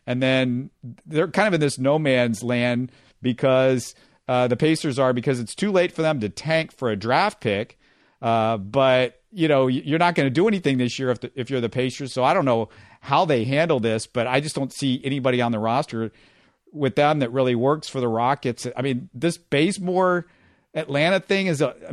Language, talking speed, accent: English, 210 wpm, American